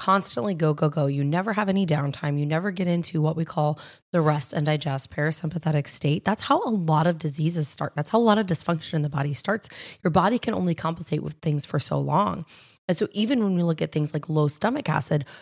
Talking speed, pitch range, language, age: 235 wpm, 155-195 Hz, English, 20-39